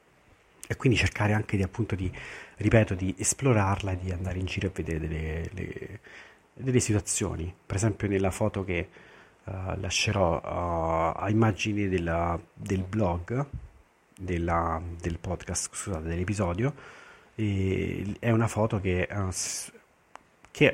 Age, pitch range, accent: 40-59, 90-110 Hz, native